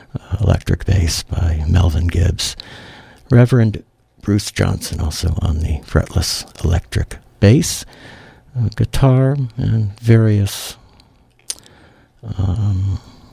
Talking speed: 90 wpm